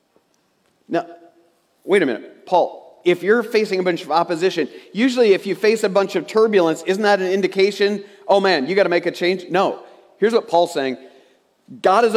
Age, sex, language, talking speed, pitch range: 40-59, male, English, 190 wpm, 125-180 Hz